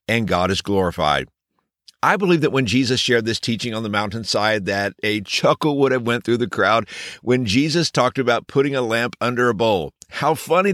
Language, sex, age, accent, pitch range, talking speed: English, male, 50-69, American, 110-155 Hz, 200 wpm